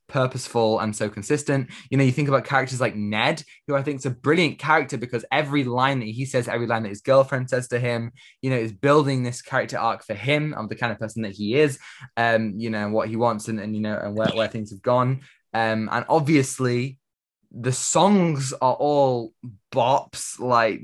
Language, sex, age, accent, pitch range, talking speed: English, male, 10-29, British, 110-135 Hz, 215 wpm